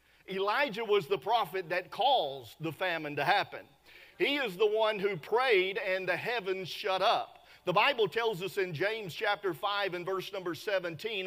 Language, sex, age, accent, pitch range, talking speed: English, male, 40-59, American, 200-260 Hz, 175 wpm